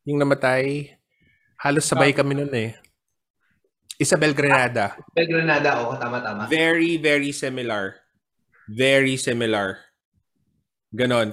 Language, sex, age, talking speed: Filipino, male, 20-39, 95 wpm